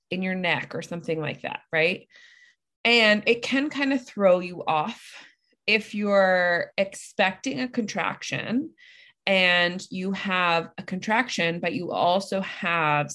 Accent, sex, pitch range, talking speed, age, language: American, female, 175-220 Hz, 135 wpm, 20-39, English